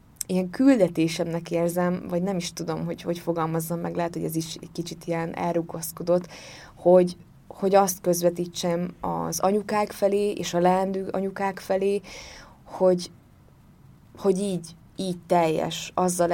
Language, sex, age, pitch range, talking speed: Hungarian, female, 20-39, 160-180 Hz, 135 wpm